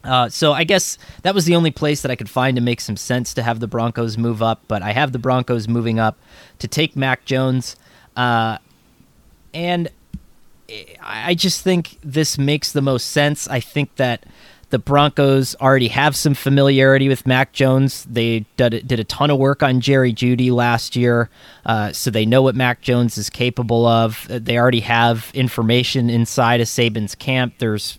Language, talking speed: English, 185 wpm